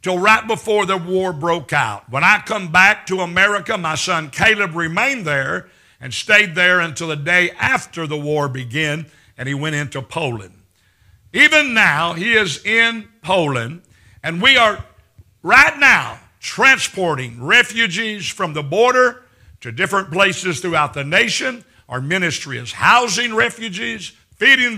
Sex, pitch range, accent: male, 145-220 Hz, American